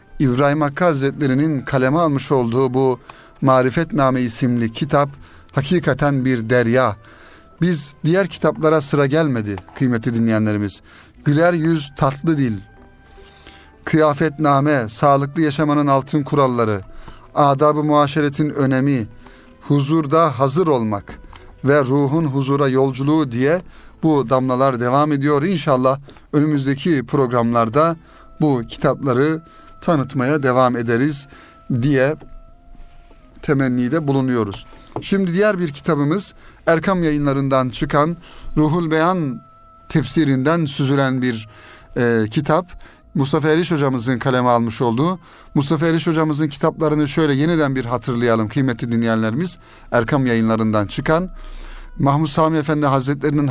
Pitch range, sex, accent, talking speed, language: 125-155 Hz, male, native, 100 wpm, Turkish